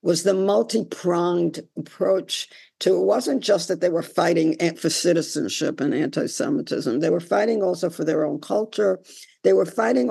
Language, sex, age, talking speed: English, female, 60-79, 160 wpm